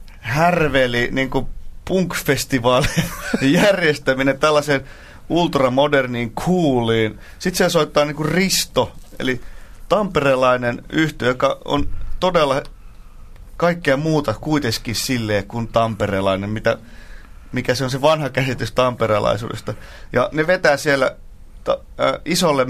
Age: 30-49